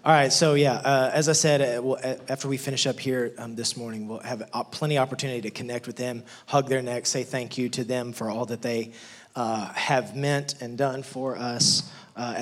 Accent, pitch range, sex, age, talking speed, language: American, 130-155 Hz, male, 20-39, 225 wpm, English